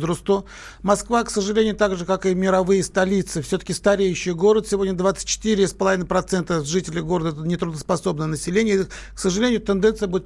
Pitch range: 165-200 Hz